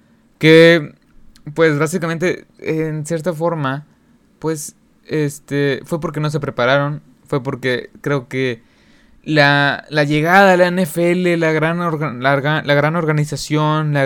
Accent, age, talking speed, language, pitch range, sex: Mexican, 20-39, 130 wpm, Spanish, 130-165 Hz, male